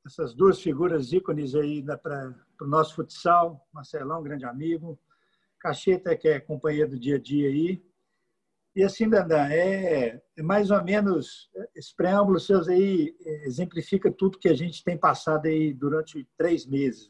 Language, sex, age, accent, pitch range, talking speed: Portuguese, male, 50-69, Brazilian, 145-190 Hz, 160 wpm